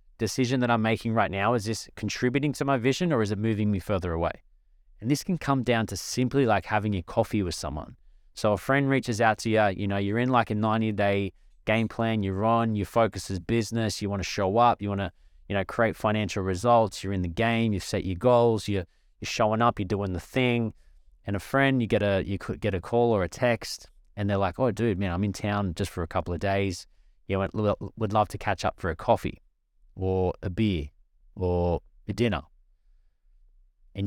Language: English